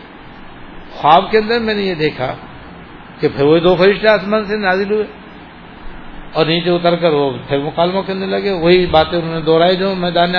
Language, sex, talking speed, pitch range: Urdu, male, 185 wpm, 155-200 Hz